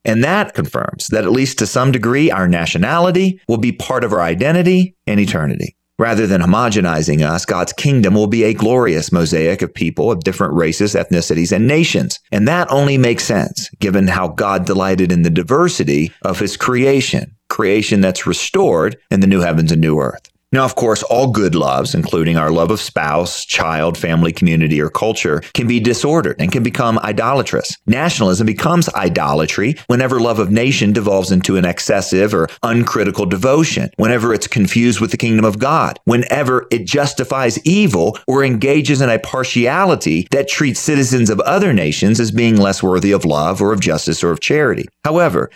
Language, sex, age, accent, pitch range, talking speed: English, male, 40-59, American, 95-140 Hz, 180 wpm